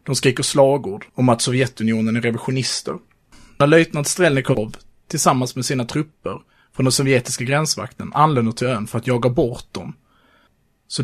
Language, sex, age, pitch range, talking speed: Swedish, male, 30-49, 120-140 Hz, 150 wpm